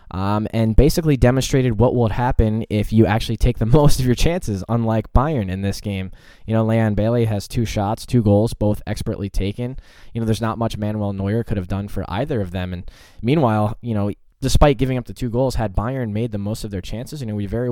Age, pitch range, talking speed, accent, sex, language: 10-29, 95-115 Hz, 235 wpm, American, male, English